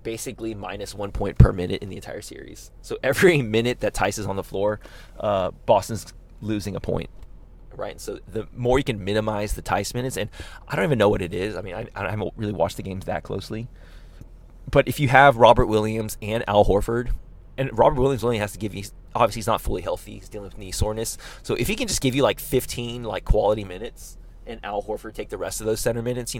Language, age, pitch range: English, 20-39, 95-115 Hz